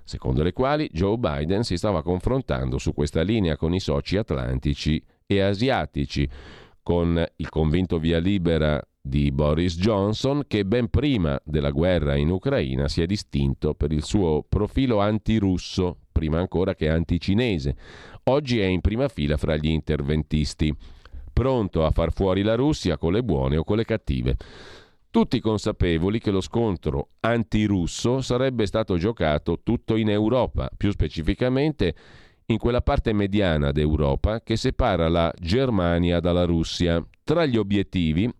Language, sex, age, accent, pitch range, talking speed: Italian, male, 40-59, native, 75-110 Hz, 145 wpm